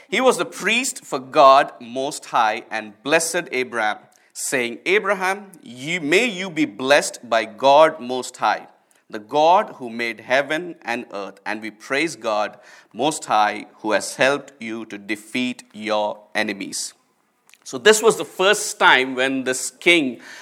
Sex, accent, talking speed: male, Indian, 155 wpm